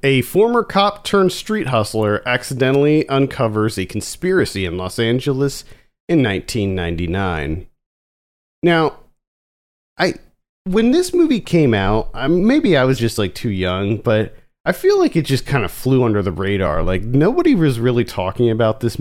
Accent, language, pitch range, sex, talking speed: American, English, 105-160 Hz, male, 155 wpm